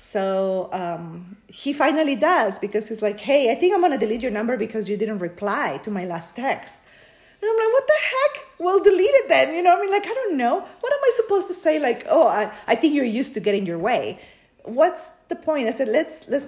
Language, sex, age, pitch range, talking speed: English, female, 40-59, 205-295 Hz, 250 wpm